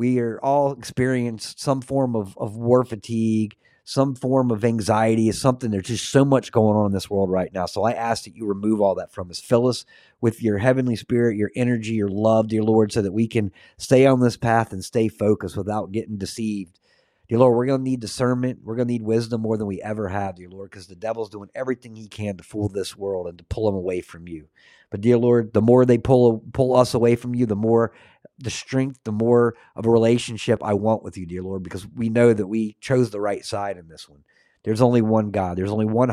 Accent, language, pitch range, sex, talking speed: American, English, 100-120 Hz, male, 240 wpm